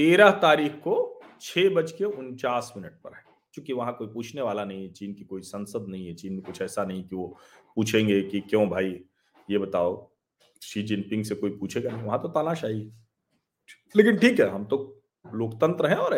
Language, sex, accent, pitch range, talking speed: Hindi, male, native, 105-170 Hz, 145 wpm